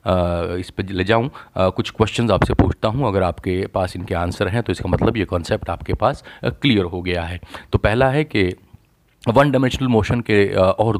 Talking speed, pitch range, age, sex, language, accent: 190 wpm, 95-120 Hz, 30-49, male, Hindi, native